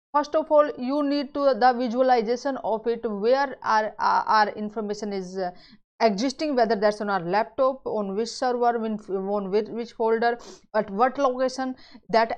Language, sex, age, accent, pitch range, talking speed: English, female, 30-49, Indian, 225-290 Hz, 170 wpm